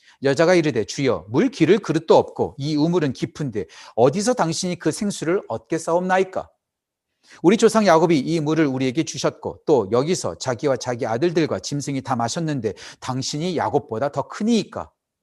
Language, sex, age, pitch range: Korean, male, 40-59, 130-170 Hz